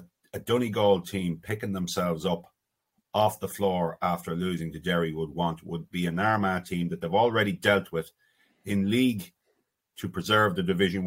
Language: English